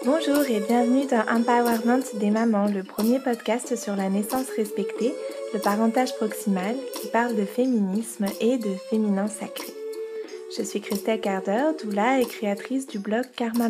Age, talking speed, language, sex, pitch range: 20-39, 155 wpm, French, female, 210-255 Hz